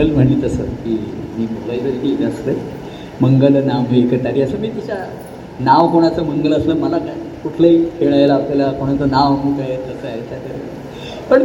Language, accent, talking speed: Marathi, native, 155 wpm